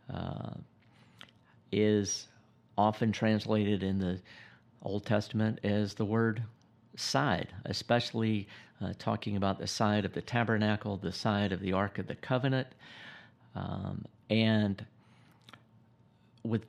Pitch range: 95-115 Hz